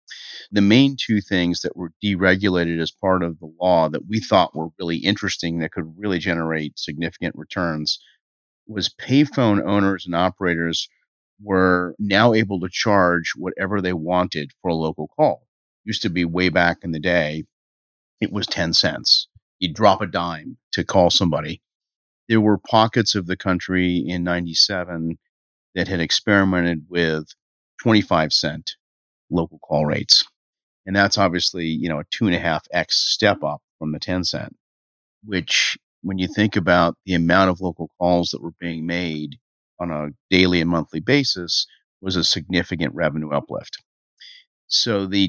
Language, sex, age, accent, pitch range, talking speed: English, male, 40-59, American, 80-95 Hz, 160 wpm